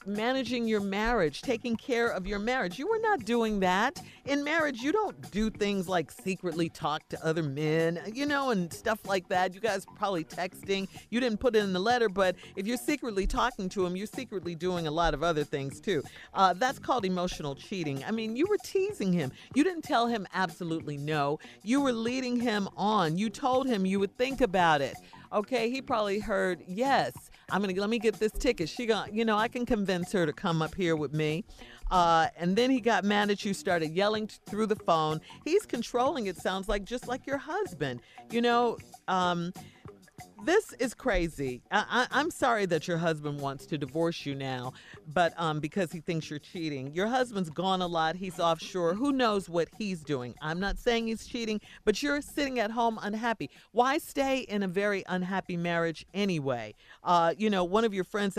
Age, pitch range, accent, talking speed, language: 50-69, 165-235 Hz, American, 205 wpm, English